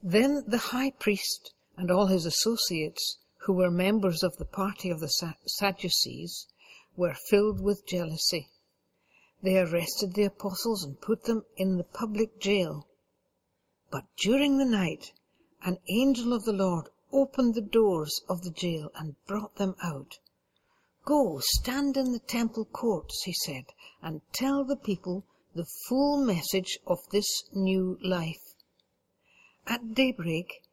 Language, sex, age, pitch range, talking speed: English, female, 60-79, 175-230 Hz, 140 wpm